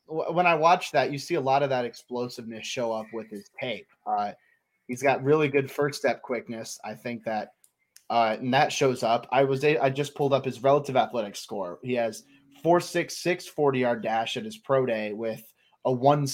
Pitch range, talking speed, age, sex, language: 120-140 Hz, 215 wpm, 30-49, male, English